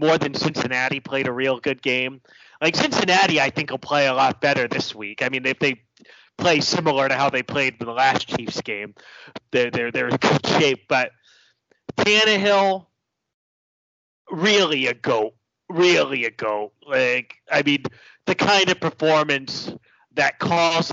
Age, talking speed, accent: 30-49, 165 wpm, American